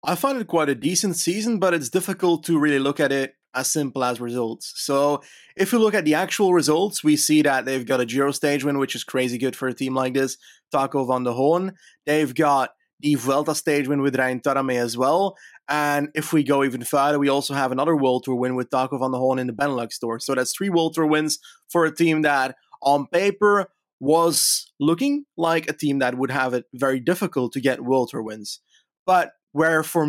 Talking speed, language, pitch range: 225 wpm, English, 135-160 Hz